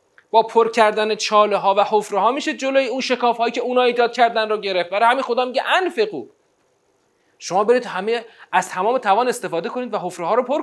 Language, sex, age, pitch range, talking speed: Persian, male, 30-49, 210-295 Hz, 200 wpm